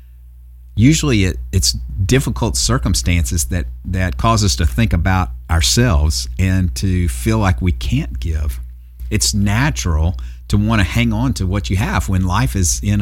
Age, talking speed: 50-69, 155 wpm